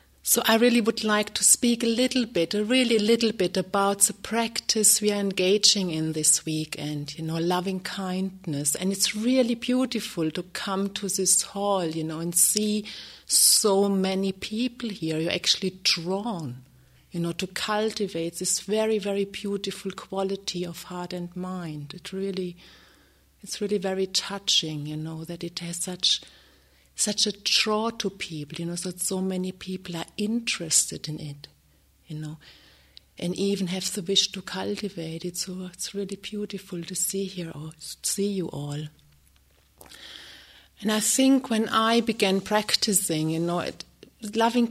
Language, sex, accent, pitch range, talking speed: English, female, German, 160-200 Hz, 160 wpm